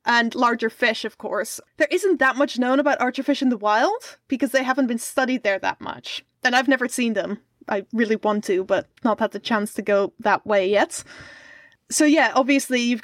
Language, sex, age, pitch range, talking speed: English, female, 20-39, 225-285 Hz, 210 wpm